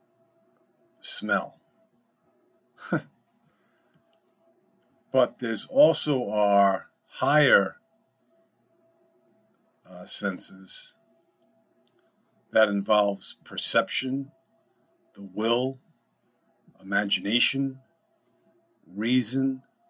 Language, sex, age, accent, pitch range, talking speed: English, male, 50-69, American, 100-130 Hz, 45 wpm